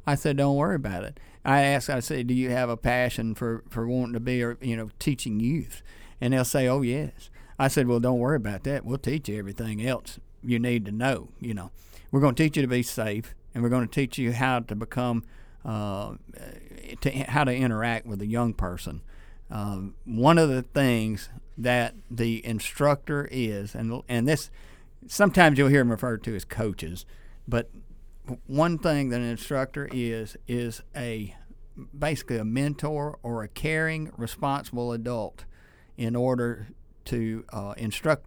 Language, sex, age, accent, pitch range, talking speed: English, male, 50-69, American, 110-135 Hz, 180 wpm